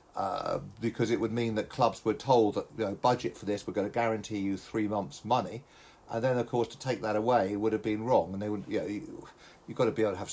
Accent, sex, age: British, male, 50-69